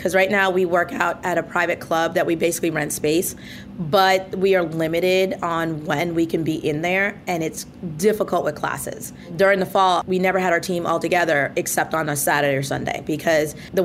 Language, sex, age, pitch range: English, female, 30-49, 165-185 Hz